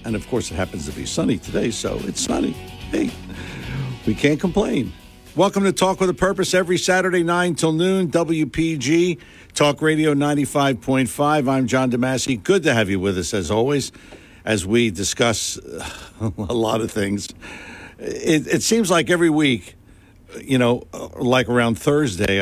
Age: 60-79